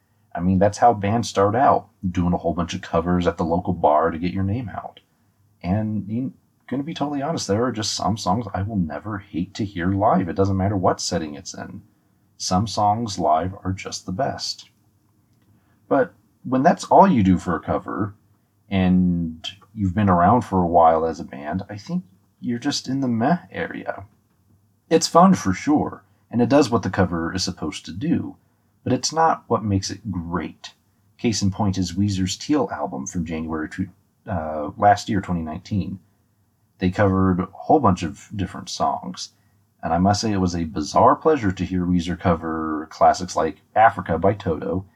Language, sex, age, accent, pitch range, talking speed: English, male, 30-49, American, 95-110 Hz, 190 wpm